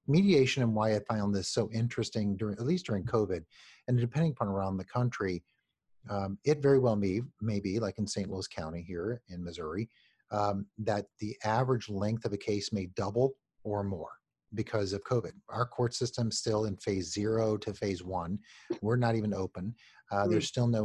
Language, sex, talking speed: English, male, 195 wpm